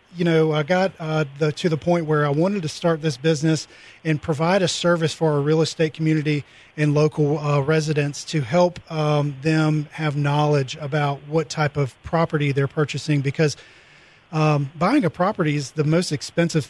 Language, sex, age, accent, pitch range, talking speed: English, male, 40-59, American, 145-160 Hz, 180 wpm